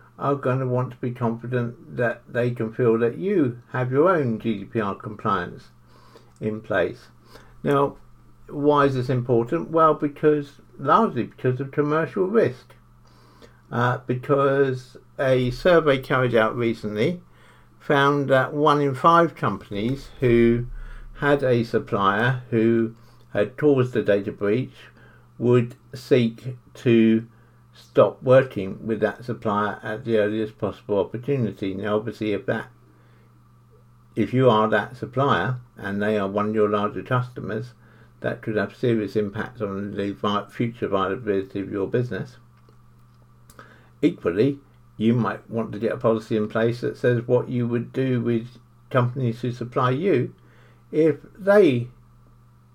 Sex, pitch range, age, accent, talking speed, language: male, 105-130 Hz, 60-79, British, 135 wpm, English